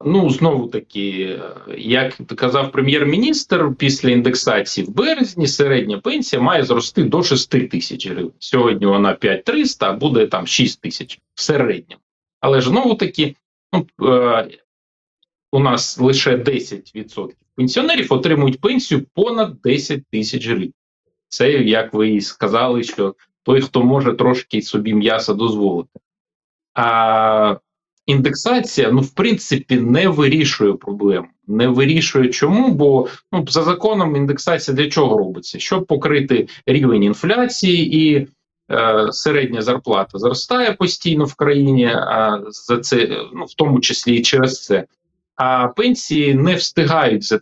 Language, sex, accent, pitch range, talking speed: Ukrainian, male, native, 120-165 Hz, 130 wpm